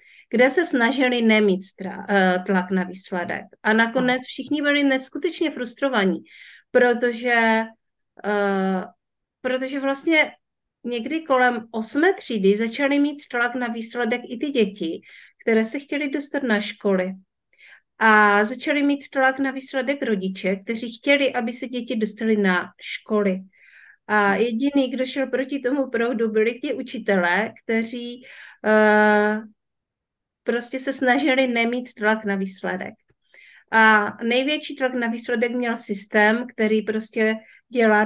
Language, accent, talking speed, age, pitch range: Czech, native, 125 wpm, 50-69, 200-250 Hz